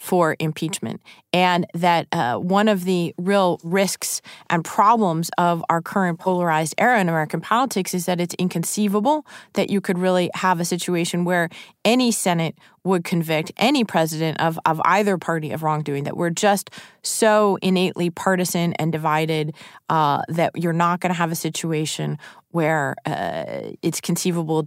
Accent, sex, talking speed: American, female, 160 wpm